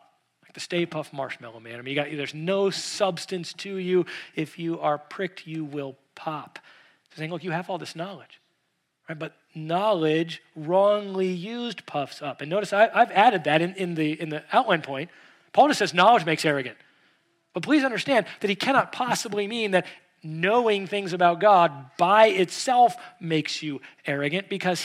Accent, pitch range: American, 160-200 Hz